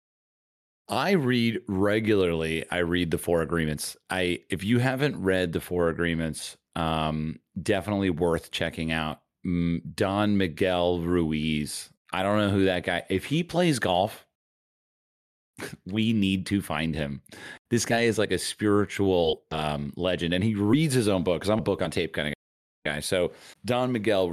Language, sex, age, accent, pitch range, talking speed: English, male, 30-49, American, 80-110 Hz, 160 wpm